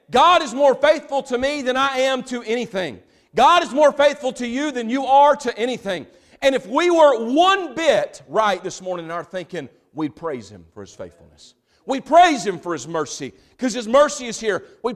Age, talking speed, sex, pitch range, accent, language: 40-59, 210 wpm, male, 175-280 Hz, American, English